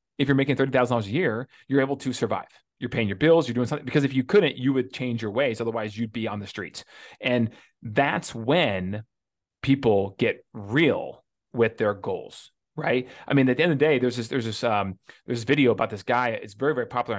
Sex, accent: male, American